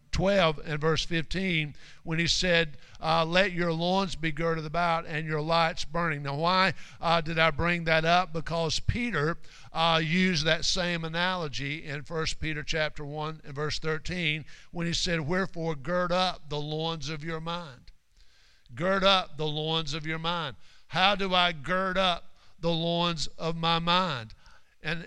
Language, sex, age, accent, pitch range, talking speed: English, male, 50-69, American, 150-180 Hz, 170 wpm